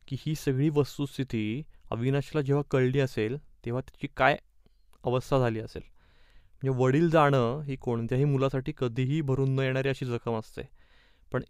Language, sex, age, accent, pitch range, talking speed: Marathi, male, 20-39, native, 125-145 Hz, 145 wpm